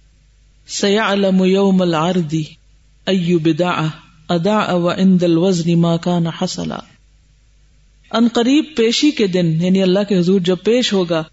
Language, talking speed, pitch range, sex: Urdu, 95 wpm, 185-250 Hz, female